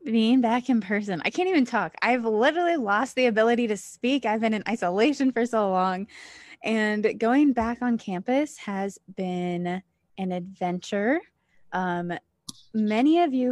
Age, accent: 20-39, American